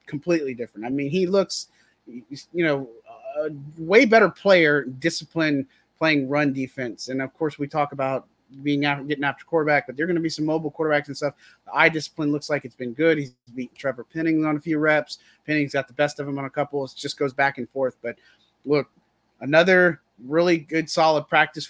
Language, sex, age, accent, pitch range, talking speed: English, male, 30-49, American, 140-165 Hz, 205 wpm